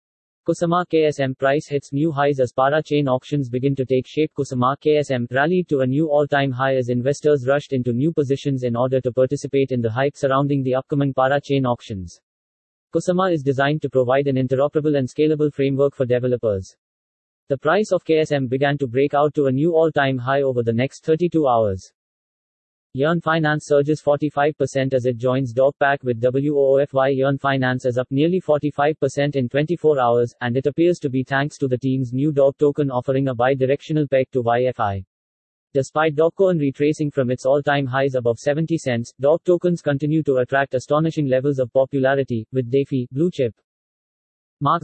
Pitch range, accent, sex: 130-150 Hz, Indian, male